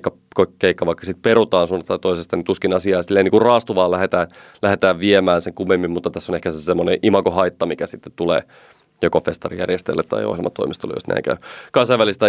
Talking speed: 175 wpm